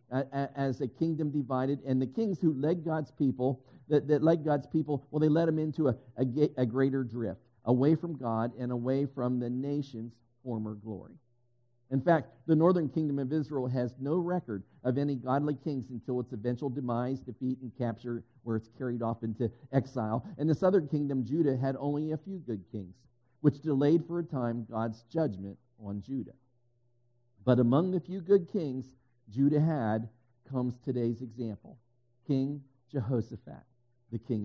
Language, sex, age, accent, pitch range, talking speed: English, male, 50-69, American, 120-145 Hz, 170 wpm